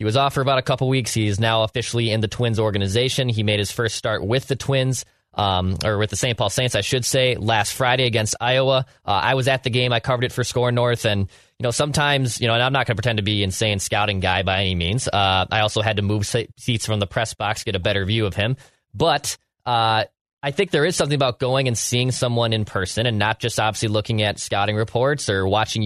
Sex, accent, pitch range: male, American, 110-125 Hz